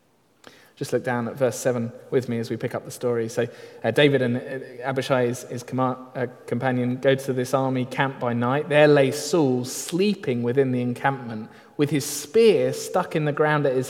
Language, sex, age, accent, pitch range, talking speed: English, male, 30-49, British, 120-150 Hz, 200 wpm